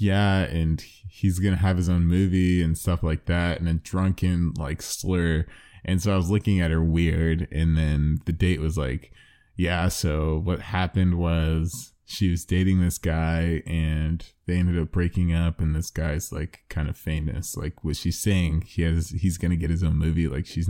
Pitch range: 80-95 Hz